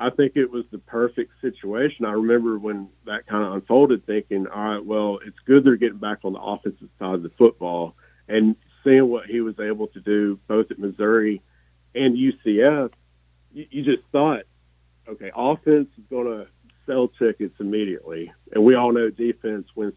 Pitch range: 95-115 Hz